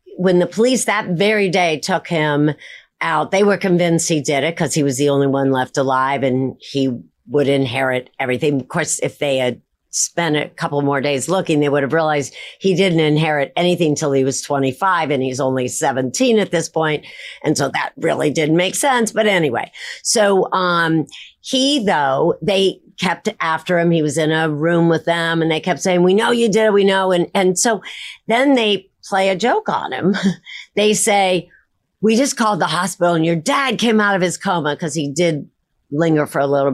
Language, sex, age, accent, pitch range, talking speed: English, female, 50-69, American, 150-210 Hz, 205 wpm